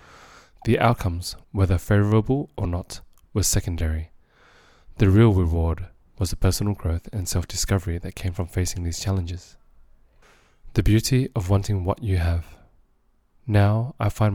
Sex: male